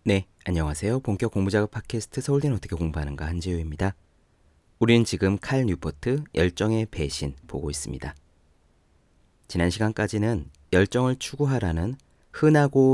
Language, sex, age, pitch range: Korean, male, 30-49, 80-115 Hz